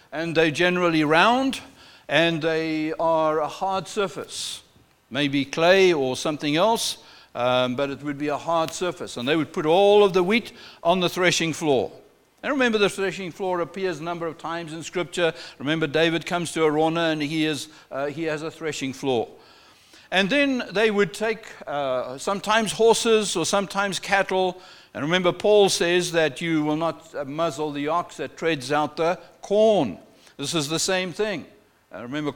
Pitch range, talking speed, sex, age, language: 155-200 Hz, 175 wpm, male, 60-79, English